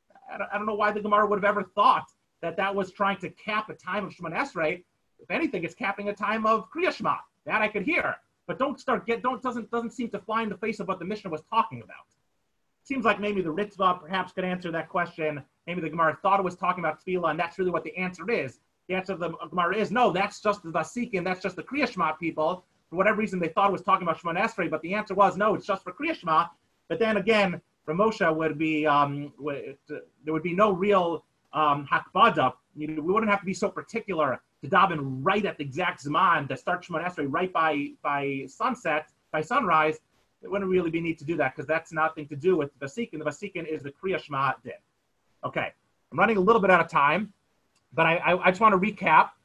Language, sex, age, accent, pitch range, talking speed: English, male, 30-49, American, 155-205 Hz, 235 wpm